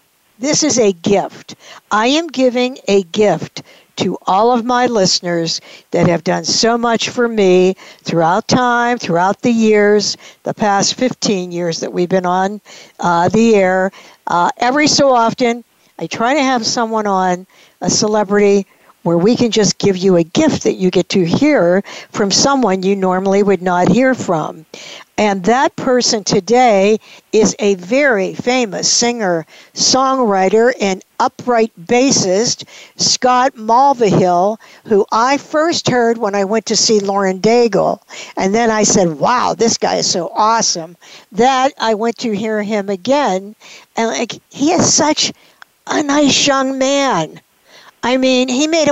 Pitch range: 195-250 Hz